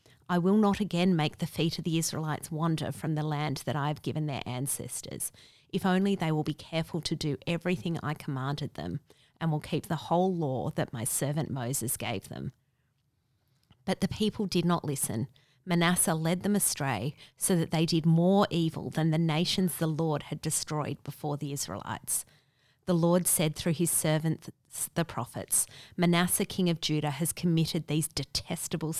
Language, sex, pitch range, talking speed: English, female, 145-170 Hz, 180 wpm